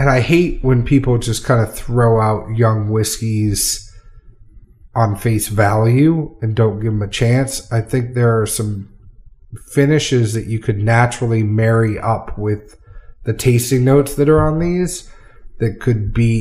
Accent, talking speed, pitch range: American, 160 wpm, 105-130 Hz